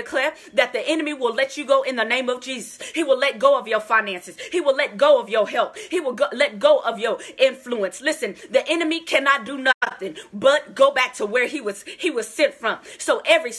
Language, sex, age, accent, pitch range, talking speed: English, female, 30-49, American, 235-305 Hz, 235 wpm